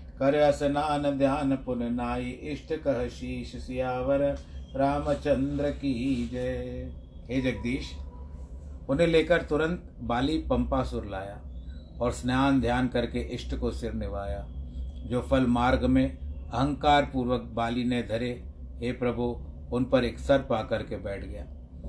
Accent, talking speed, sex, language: native, 125 wpm, male, Hindi